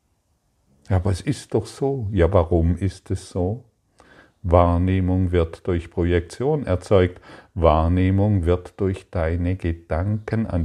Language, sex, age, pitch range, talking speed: German, male, 50-69, 85-100 Hz, 125 wpm